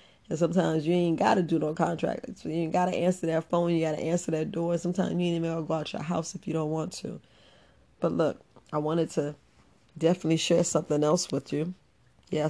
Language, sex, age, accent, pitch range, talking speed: English, female, 40-59, American, 150-175 Hz, 230 wpm